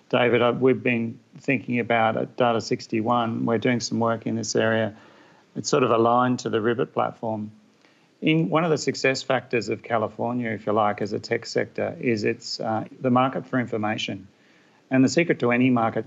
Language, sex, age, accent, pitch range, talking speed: English, male, 40-59, Australian, 110-125 Hz, 190 wpm